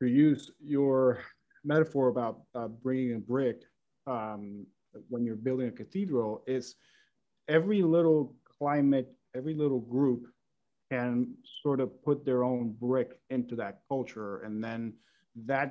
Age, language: 40-59, English